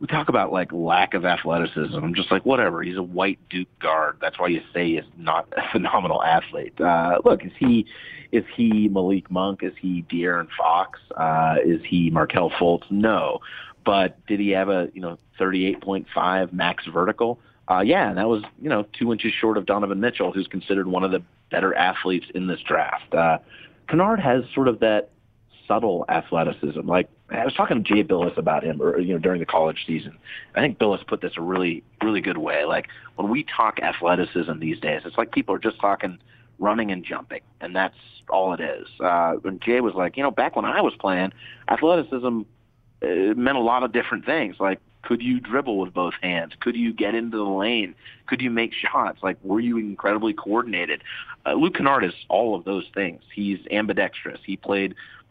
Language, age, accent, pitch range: English, 30-49, American, 90-115 Hz